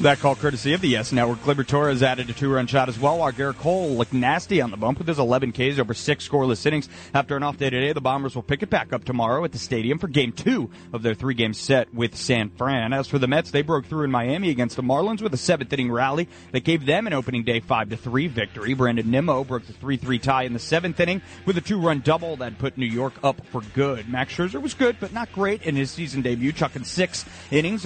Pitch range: 125-155 Hz